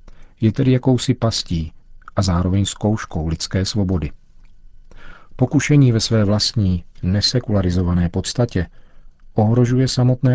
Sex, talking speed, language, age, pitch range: male, 100 wpm, Czech, 40-59, 90-110 Hz